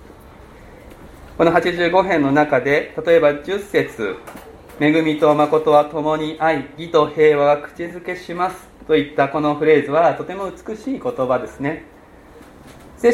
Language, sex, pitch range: Japanese, male, 130-170 Hz